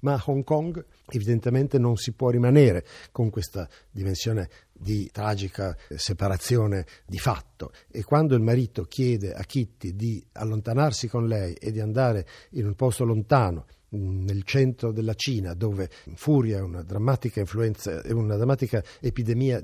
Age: 60-79